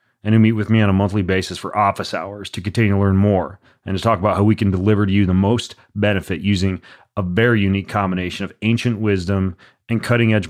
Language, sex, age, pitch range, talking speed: English, male, 30-49, 95-110 Hz, 230 wpm